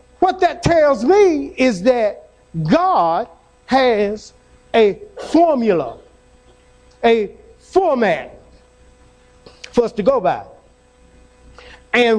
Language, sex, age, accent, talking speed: English, male, 50-69, American, 90 wpm